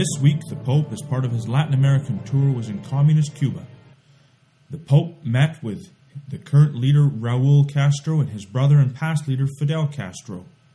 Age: 30-49